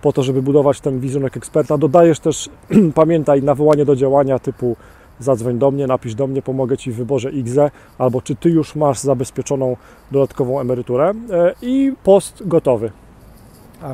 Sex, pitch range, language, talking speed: male, 135-160 Hz, English, 160 wpm